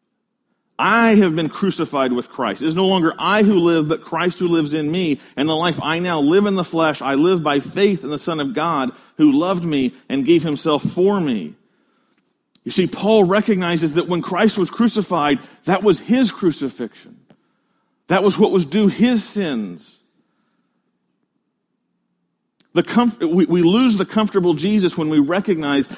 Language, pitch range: English, 165-210 Hz